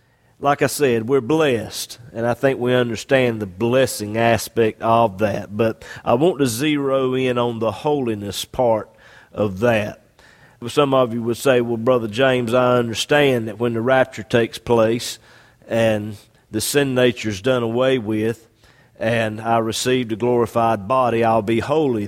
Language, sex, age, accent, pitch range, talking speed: English, male, 50-69, American, 115-130 Hz, 160 wpm